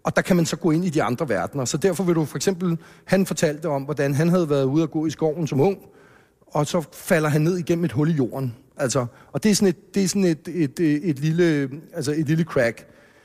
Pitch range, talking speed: 145-180 Hz, 220 wpm